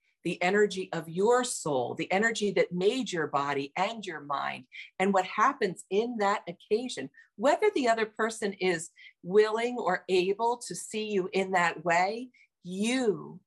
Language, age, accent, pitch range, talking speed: English, 50-69, American, 155-210 Hz, 155 wpm